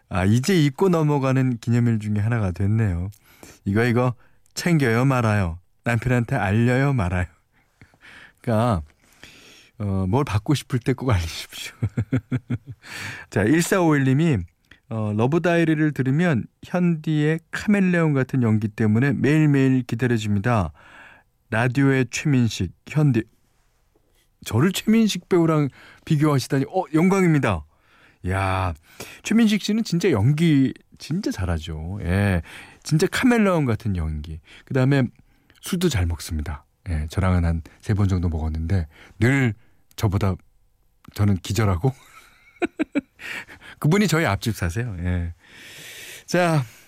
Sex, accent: male, native